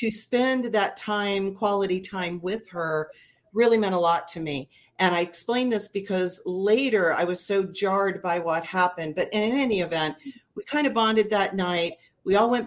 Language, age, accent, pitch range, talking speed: English, 40-59, American, 170-220 Hz, 190 wpm